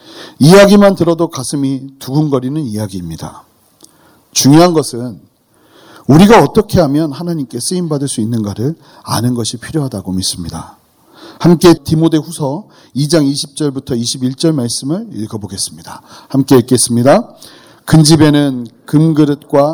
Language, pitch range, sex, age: Korean, 125-160 Hz, male, 40-59